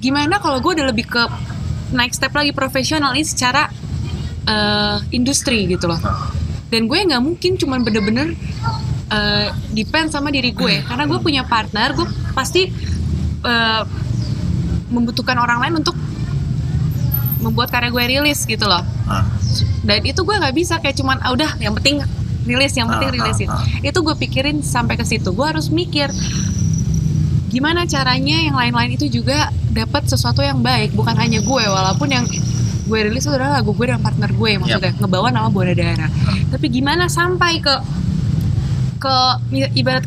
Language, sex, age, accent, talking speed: Indonesian, female, 20-39, native, 155 wpm